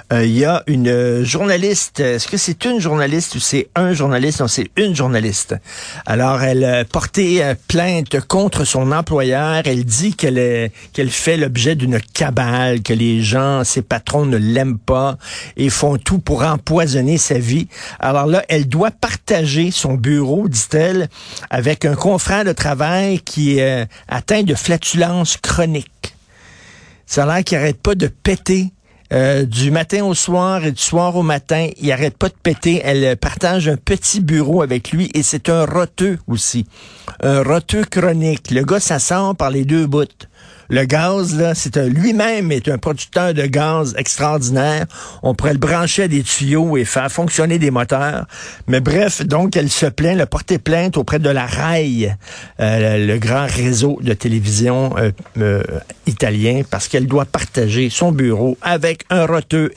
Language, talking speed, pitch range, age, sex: French, 175 wpm, 125-170 Hz, 50-69, male